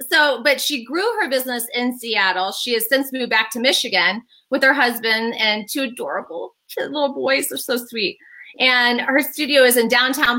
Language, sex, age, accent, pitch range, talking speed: English, female, 30-49, American, 215-260 Hz, 185 wpm